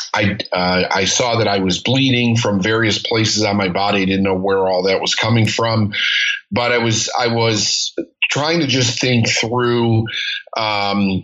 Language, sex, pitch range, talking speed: English, male, 100-120 Hz, 180 wpm